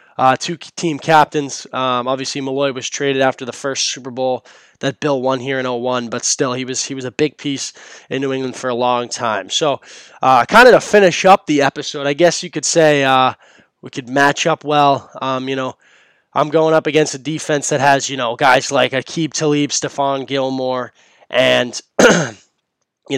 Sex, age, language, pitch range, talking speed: male, 20-39, English, 130-155 Hz, 200 wpm